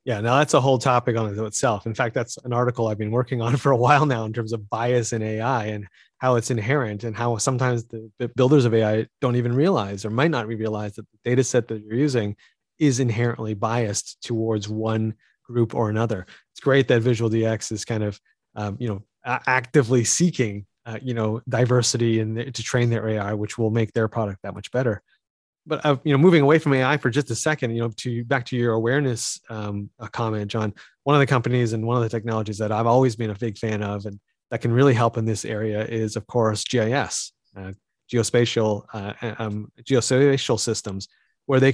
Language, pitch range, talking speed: English, 110-130 Hz, 215 wpm